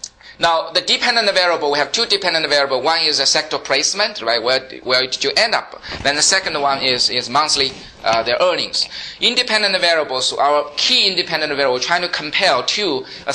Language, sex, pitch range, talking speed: English, male, 125-160 Hz, 195 wpm